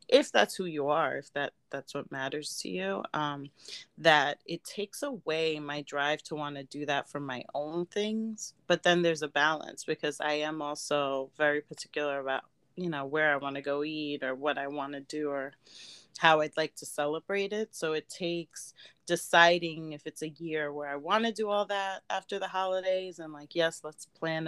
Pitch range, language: 150-170 Hz, English